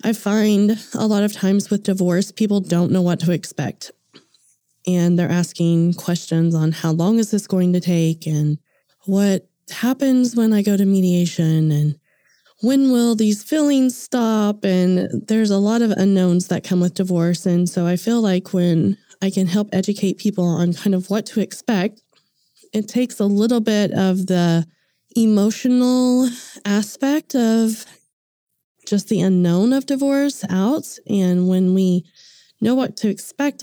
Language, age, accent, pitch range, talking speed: English, 20-39, American, 175-215 Hz, 160 wpm